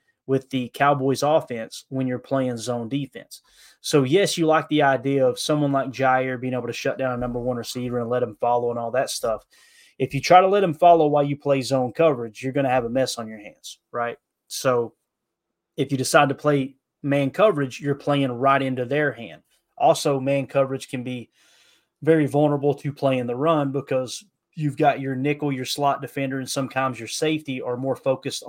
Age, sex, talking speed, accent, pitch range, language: 20-39, male, 205 wpm, American, 120-145 Hz, English